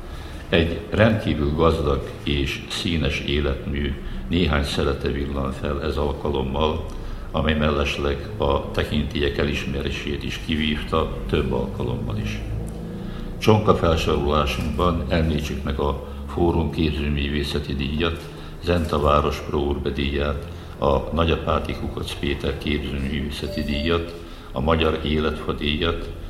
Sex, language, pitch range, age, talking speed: male, Hungarian, 70-85 Hz, 60-79, 100 wpm